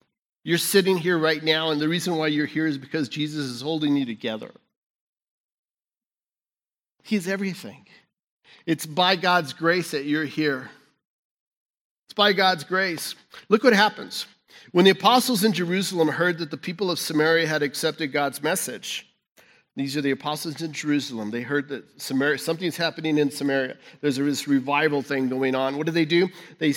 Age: 50-69